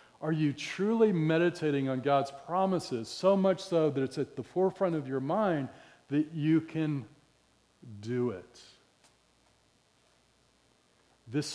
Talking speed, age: 125 wpm, 40-59